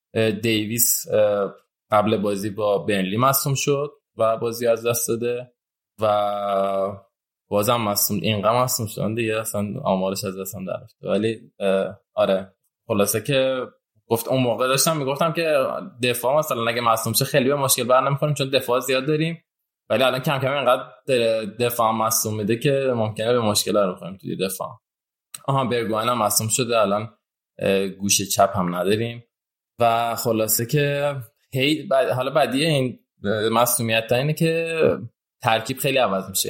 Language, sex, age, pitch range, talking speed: Persian, male, 20-39, 105-130 Hz, 145 wpm